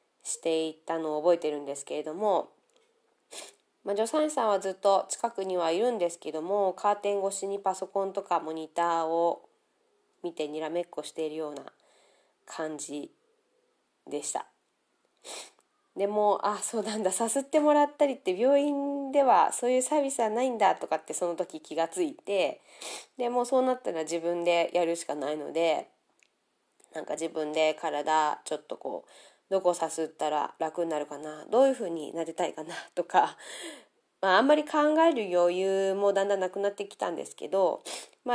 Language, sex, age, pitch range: Japanese, female, 20-39, 165-245 Hz